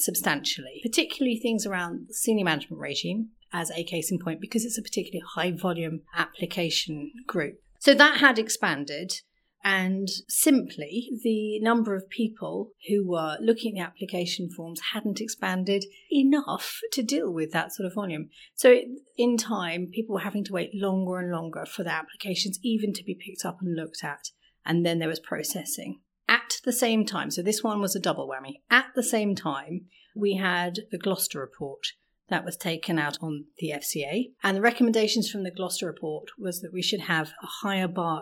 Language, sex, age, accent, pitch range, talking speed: English, female, 40-59, British, 170-225 Hz, 180 wpm